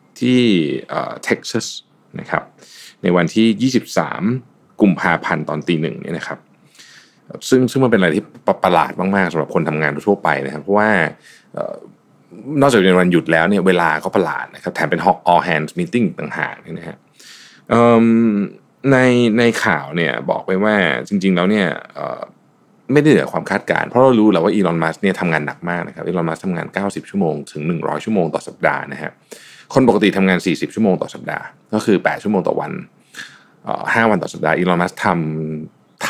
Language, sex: Thai, male